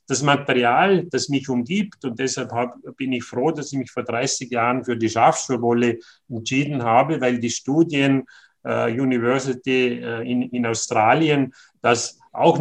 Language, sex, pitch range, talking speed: German, male, 120-150 Hz, 155 wpm